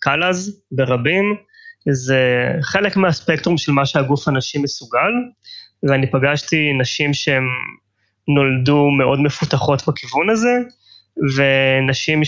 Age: 20-39